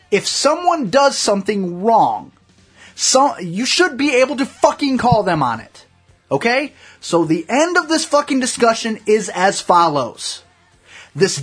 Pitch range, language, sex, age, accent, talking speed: 175-275 Hz, English, male, 20-39, American, 140 wpm